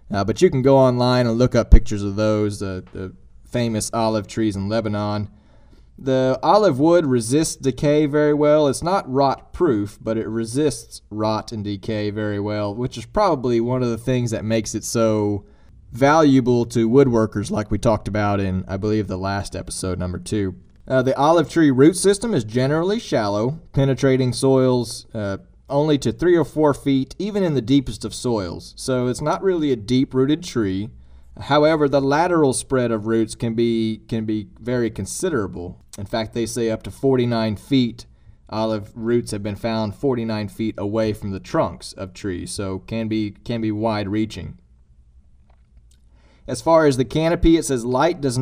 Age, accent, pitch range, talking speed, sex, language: 30-49, American, 105-135 Hz, 180 wpm, male, English